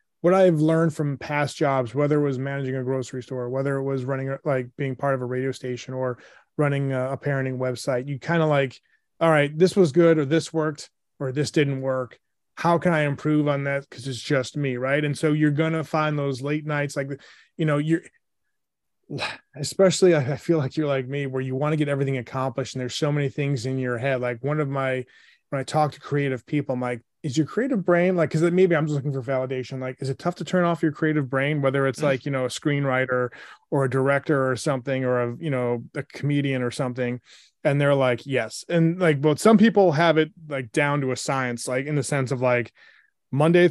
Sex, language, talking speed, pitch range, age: male, English, 230 wpm, 130-155 Hz, 30-49